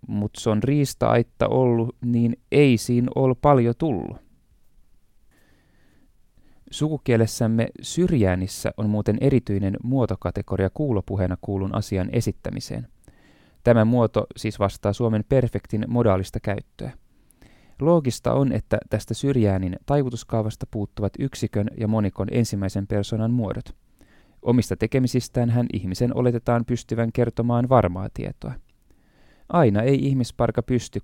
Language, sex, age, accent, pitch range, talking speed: Finnish, male, 20-39, native, 105-125 Hz, 105 wpm